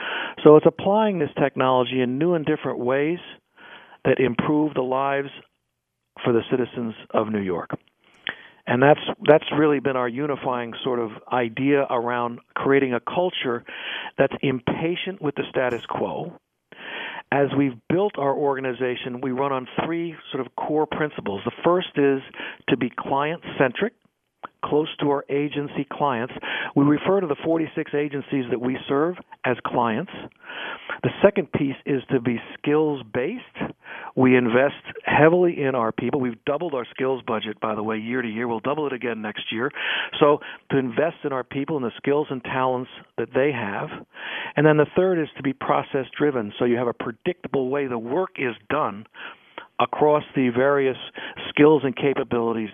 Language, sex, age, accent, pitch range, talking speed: English, male, 50-69, American, 125-150 Hz, 165 wpm